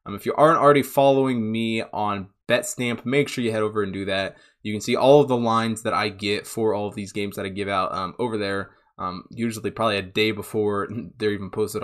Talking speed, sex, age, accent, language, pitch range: 245 wpm, male, 20-39, American, English, 100-120 Hz